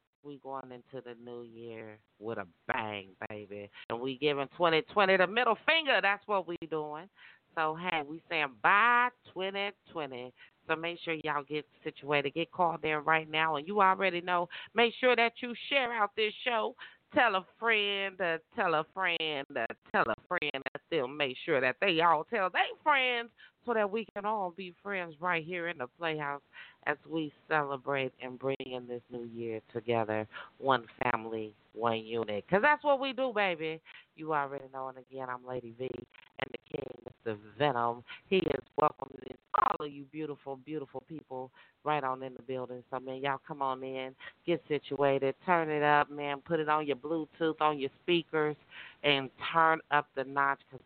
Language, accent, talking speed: English, American, 185 wpm